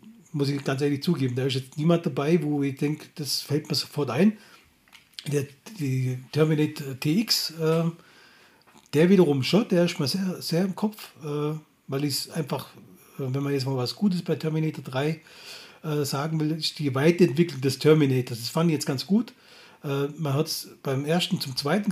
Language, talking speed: German, 185 wpm